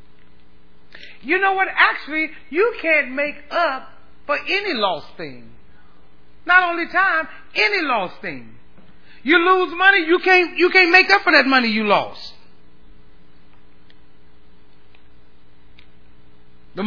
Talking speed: 115 wpm